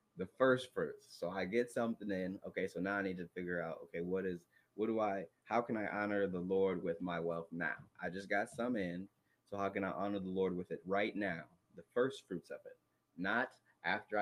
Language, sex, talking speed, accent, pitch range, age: English, male, 230 wpm, American, 85-110 Hz, 20-39